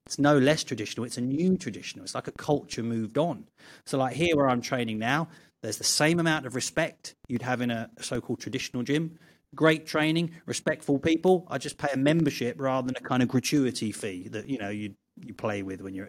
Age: 30-49